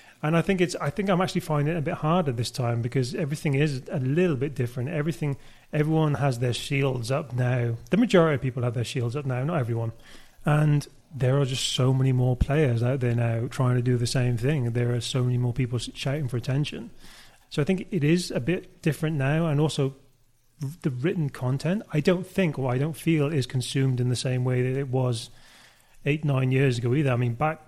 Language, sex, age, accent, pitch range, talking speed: English, male, 30-49, British, 125-150 Hz, 225 wpm